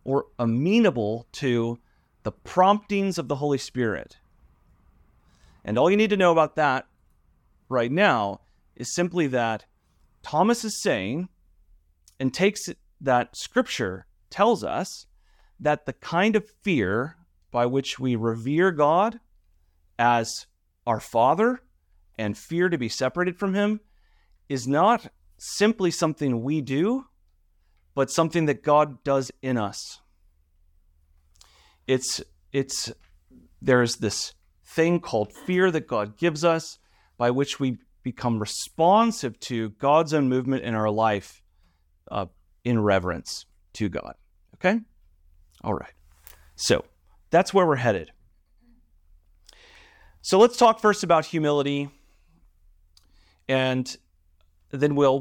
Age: 30-49